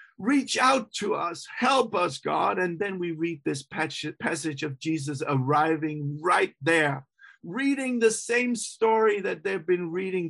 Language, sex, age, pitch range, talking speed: English, male, 50-69, 175-235 Hz, 155 wpm